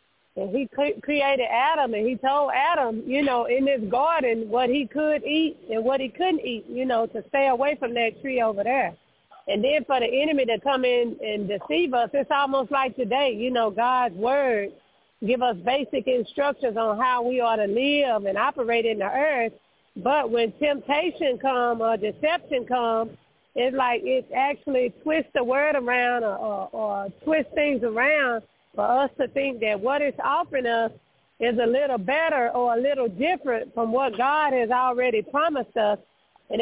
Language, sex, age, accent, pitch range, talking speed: English, female, 40-59, American, 230-275 Hz, 185 wpm